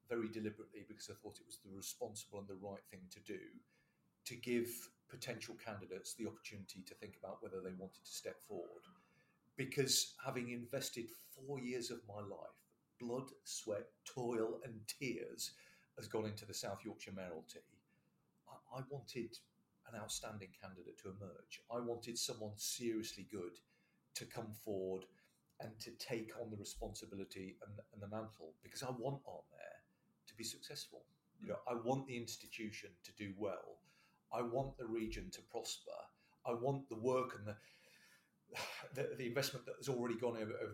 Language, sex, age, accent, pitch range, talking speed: English, male, 40-59, British, 105-130 Hz, 165 wpm